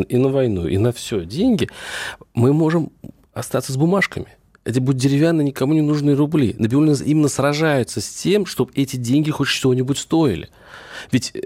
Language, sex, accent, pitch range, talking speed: Russian, male, native, 115-150 Hz, 160 wpm